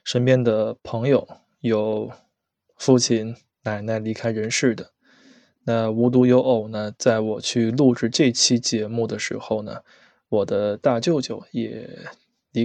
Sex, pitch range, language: male, 110-125 Hz, Chinese